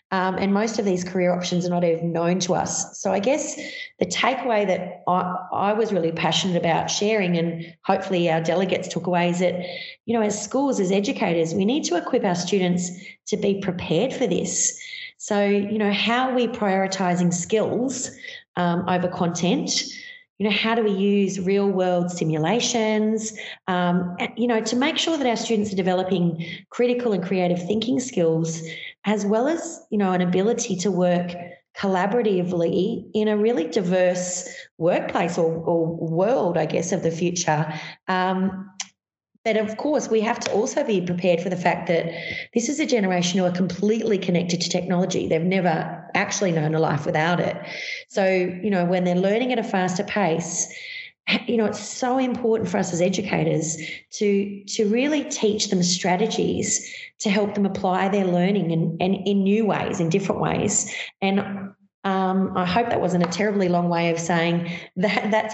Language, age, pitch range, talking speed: English, 30-49, 175-220 Hz, 180 wpm